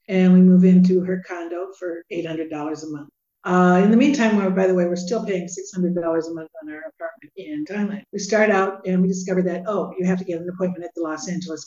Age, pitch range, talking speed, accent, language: 60-79, 170-195 Hz, 235 wpm, American, English